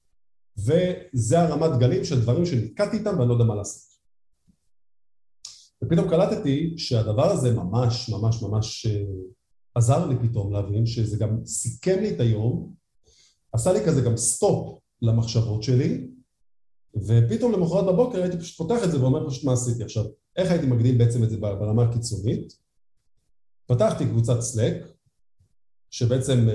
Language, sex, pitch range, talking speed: Hebrew, male, 110-150 Hz, 140 wpm